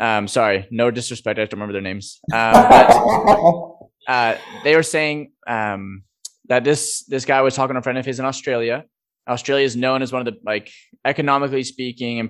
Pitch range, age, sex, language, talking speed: 115-135 Hz, 20-39, male, English, 200 wpm